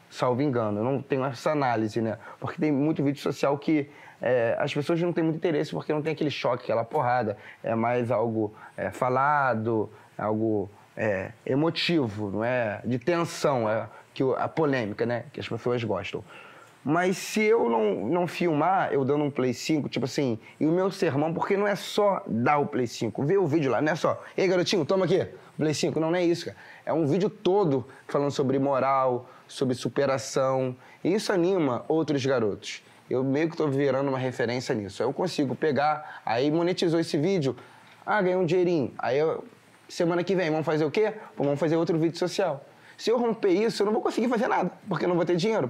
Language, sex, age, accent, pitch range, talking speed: Portuguese, male, 20-39, Brazilian, 130-175 Hz, 195 wpm